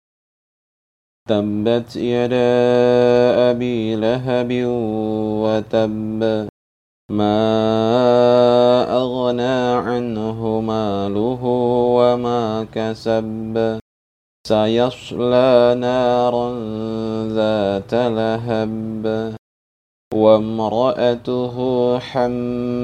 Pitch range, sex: 110-120 Hz, male